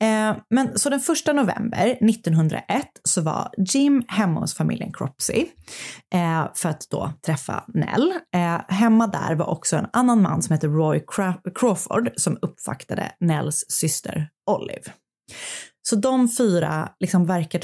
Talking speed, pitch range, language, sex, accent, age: 140 wpm, 160-215 Hz, Swedish, female, native, 20-39